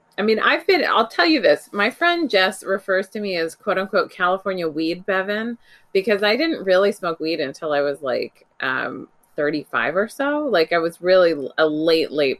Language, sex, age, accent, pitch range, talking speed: English, female, 20-39, American, 165-230 Hz, 200 wpm